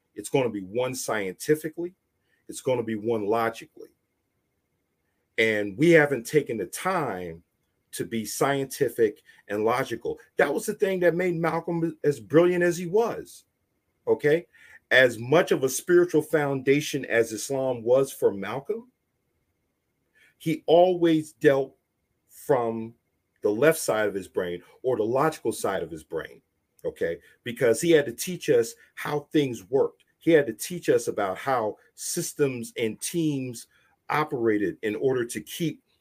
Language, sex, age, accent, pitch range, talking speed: English, male, 40-59, American, 120-185 Hz, 150 wpm